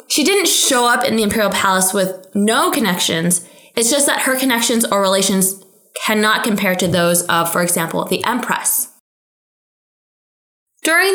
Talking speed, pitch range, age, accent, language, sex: 150 wpm, 190-305 Hz, 20-39, American, English, female